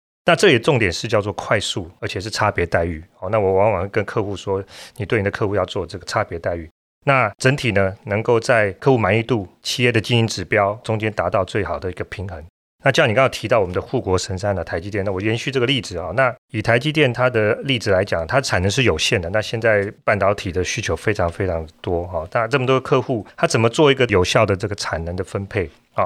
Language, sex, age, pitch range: Chinese, male, 30-49, 95-120 Hz